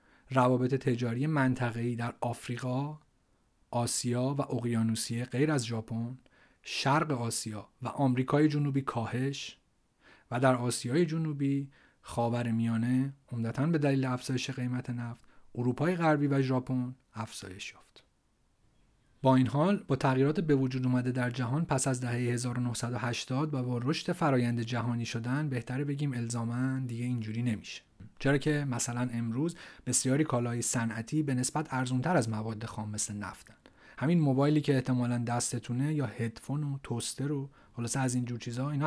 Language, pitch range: Persian, 120-140 Hz